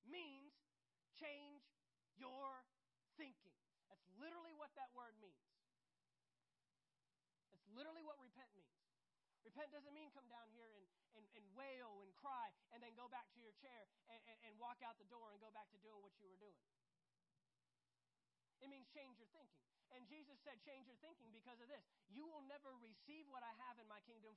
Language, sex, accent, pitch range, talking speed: English, male, American, 195-265 Hz, 180 wpm